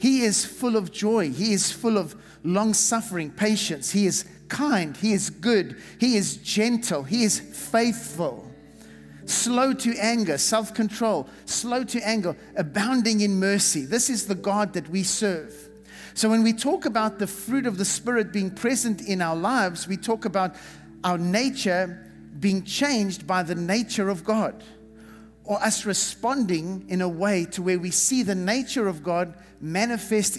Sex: male